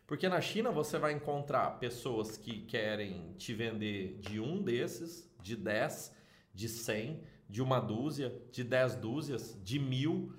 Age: 30-49